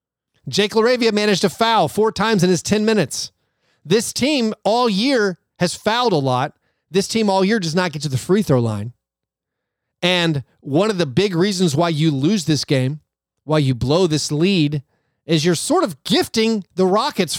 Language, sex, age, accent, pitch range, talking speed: English, male, 30-49, American, 130-195 Hz, 185 wpm